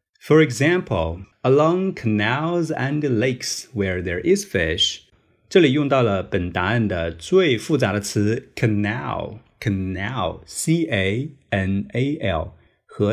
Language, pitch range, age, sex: Chinese, 95-150 Hz, 30-49, male